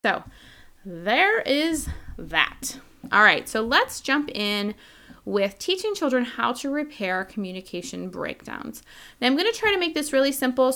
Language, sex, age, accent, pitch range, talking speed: English, female, 20-39, American, 195-255 Hz, 155 wpm